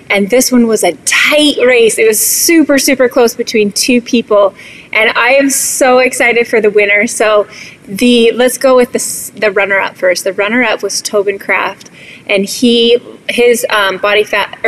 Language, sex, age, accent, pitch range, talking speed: English, female, 20-39, American, 195-240 Hz, 175 wpm